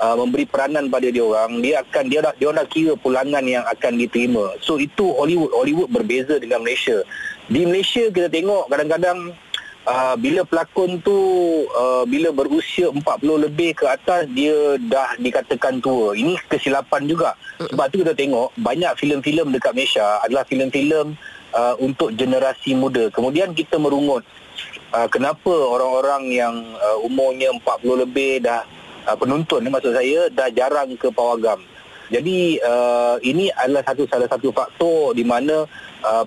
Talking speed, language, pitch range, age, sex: 145 wpm, Malay, 120-160 Hz, 30-49, male